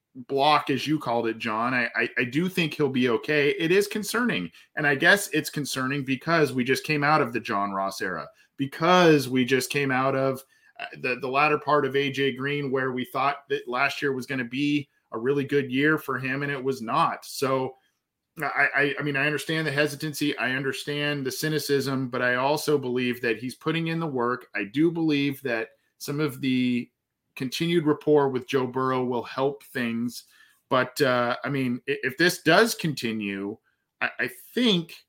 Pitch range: 130-155 Hz